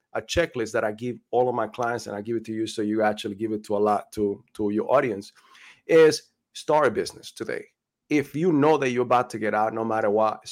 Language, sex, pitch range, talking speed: English, male, 110-145 Hz, 250 wpm